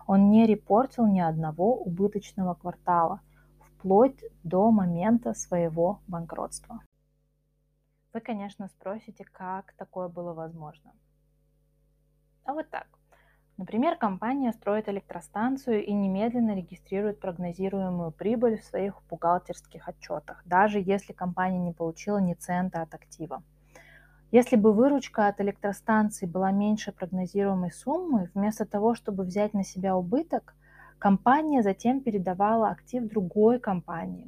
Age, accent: 20-39, native